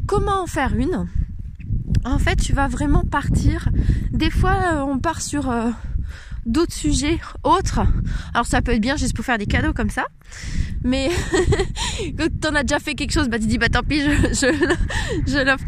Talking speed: 190 wpm